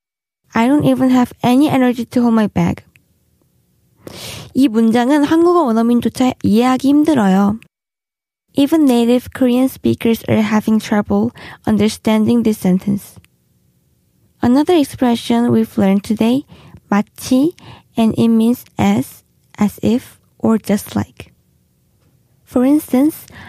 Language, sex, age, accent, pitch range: Korean, female, 20-39, native, 215-265 Hz